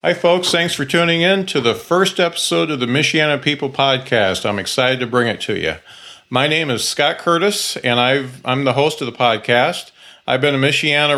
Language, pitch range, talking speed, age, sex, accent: English, 120-140 Hz, 205 wpm, 40-59, male, American